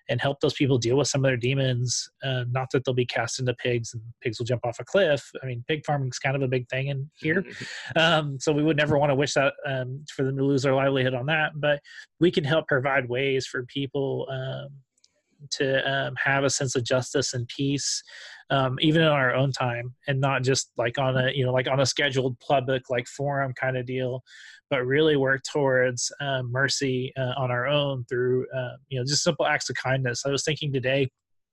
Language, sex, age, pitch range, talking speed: English, male, 20-39, 130-150 Hz, 230 wpm